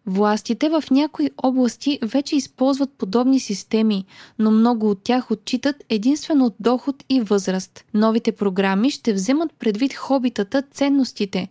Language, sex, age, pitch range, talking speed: Bulgarian, female, 20-39, 205-260 Hz, 125 wpm